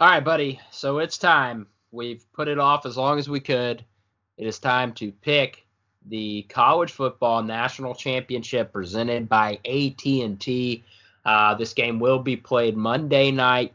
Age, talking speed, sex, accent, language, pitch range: 20-39, 155 wpm, male, American, English, 115-140 Hz